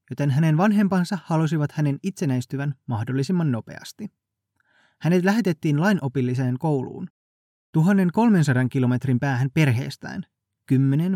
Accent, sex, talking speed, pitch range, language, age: native, male, 90 wpm, 130-165 Hz, Finnish, 20-39